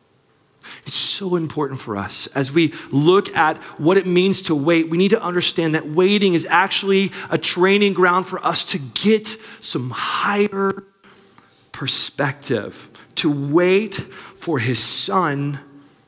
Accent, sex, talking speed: American, male, 135 wpm